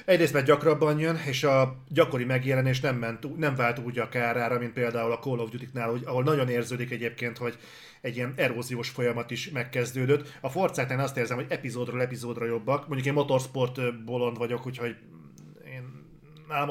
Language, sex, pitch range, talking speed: Hungarian, male, 120-150 Hz, 165 wpm